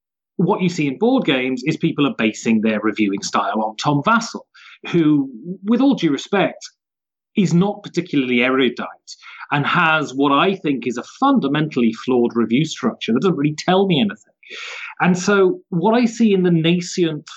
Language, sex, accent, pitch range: English, male, British, 130-185 Hz